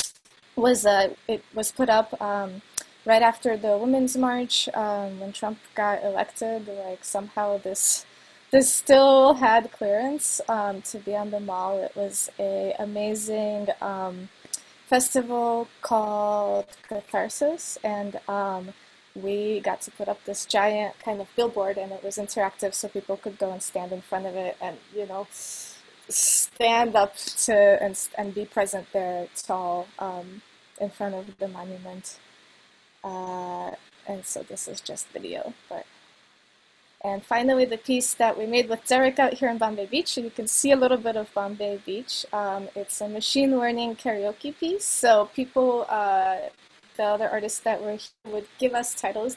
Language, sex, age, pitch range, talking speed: English, female, 20-39, 200-235 Hz, 165 wpm